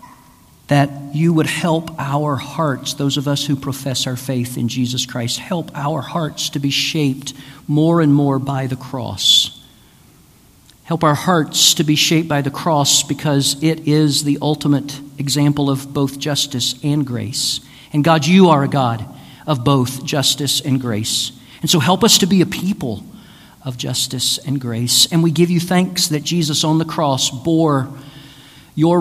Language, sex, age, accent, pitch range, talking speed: English, male, 50-69, American, 135-155 Hz, 170 wpm